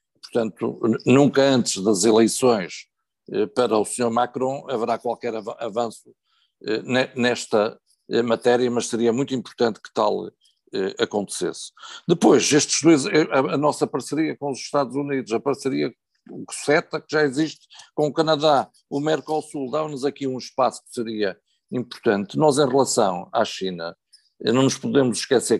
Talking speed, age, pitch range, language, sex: 135 wpm, 50-69, 115-145 Hz, Portuguese, male